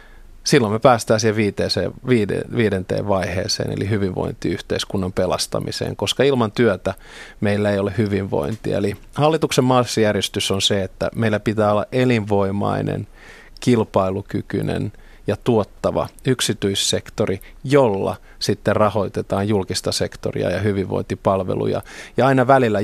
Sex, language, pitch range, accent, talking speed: male, Finnish, 100-115 Hz, native, 110 wpm